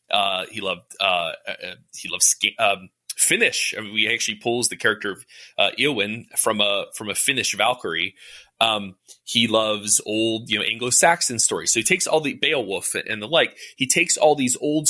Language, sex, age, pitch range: English, male, 20-39, 110-140 Hz